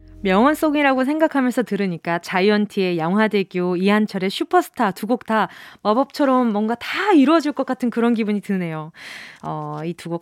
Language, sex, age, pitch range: Korean, female, 20-39, 220-330 Hz